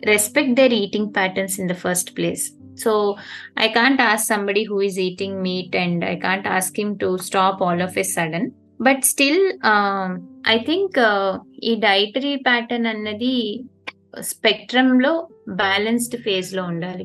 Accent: native